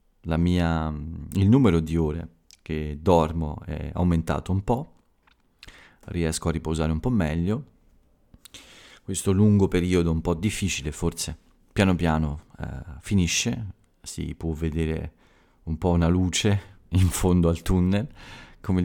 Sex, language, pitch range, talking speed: male, Italian, 80-90 Hz, 125 wpm